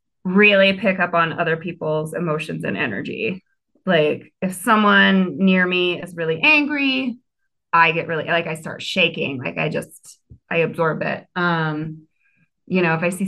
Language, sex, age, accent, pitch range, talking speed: English, female, 20-39, American, 170-220 Hz, 165 wpm